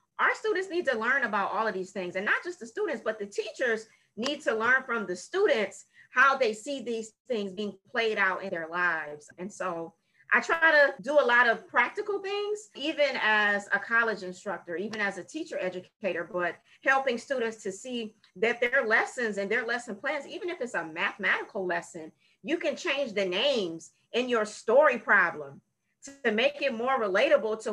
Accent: American